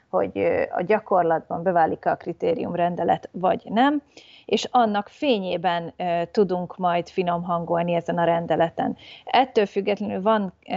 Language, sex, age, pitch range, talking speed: Hungarian, female, 30-49, 170-195 Hz, 110 wpm